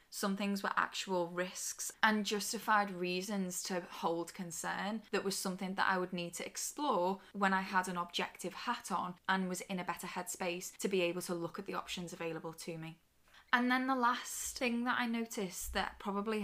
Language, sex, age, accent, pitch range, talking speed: English, female, 10-29, British, 175-205 Hz, 195 wpm